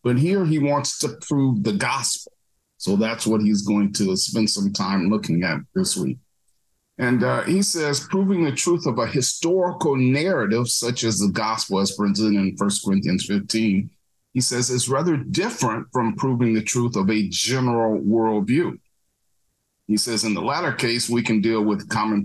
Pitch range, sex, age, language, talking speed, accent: 105-135 Hz, male, 40-59, English, 180 wpm, American